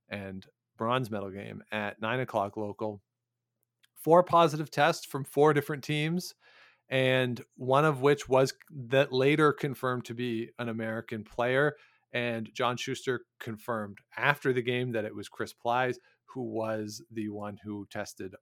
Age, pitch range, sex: 40-59, 115-135 Hz, male